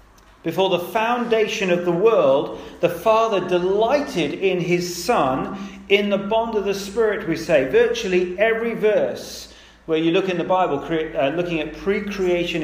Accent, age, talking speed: British, 40-59, 155 wpm